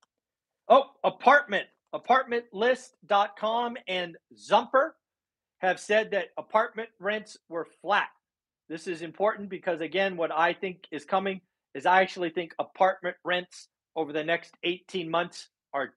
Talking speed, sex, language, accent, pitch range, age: 130 wpm, male, English, American, 165-215 Hz, 40-59